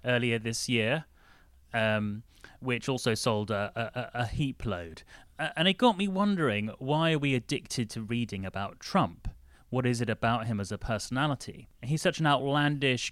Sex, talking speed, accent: male, 170 wpm, British